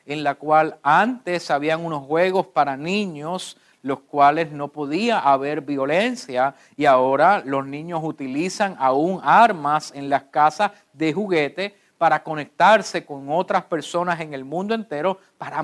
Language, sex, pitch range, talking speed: English, male, 145-210 Hz, 140 wpm